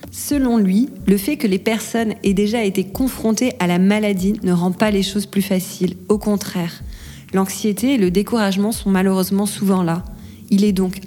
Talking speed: 185 wpm